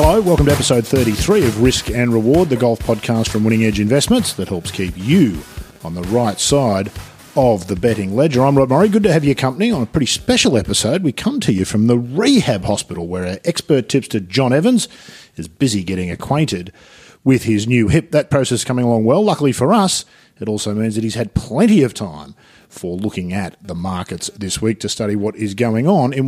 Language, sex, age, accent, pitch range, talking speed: English, male, 40-59, Australian, 100-145 Hz, 215 wpm